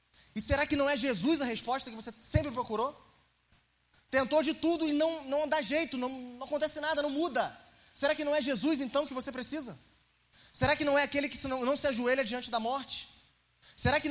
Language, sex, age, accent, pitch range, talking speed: Portuguese, male, 20-39, Brazilian, 255-300 Hz, 210 wpm